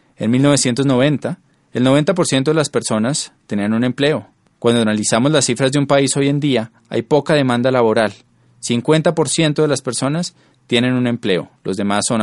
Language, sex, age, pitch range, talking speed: Spanish, male, 20-39, 115-145 Hz, 160 wpm